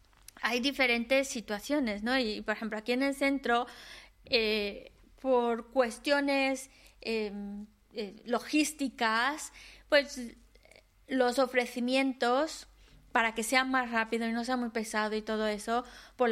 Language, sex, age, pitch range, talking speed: Spanish, female, 20-39, 230-270 Hz, 120 wpm